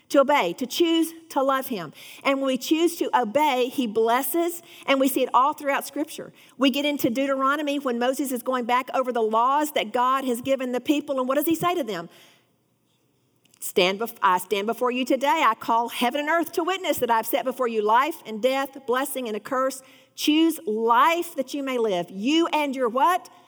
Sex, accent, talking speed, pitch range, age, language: female, American, 215 wpm, 250-315 Hz, 50-69, English